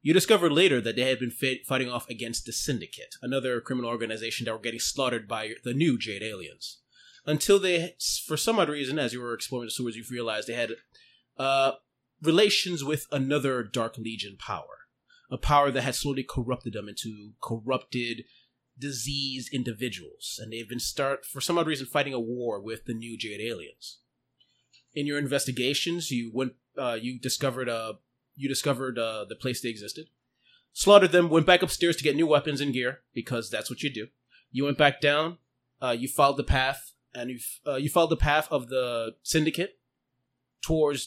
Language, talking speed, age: English, 185 wpm, 30-49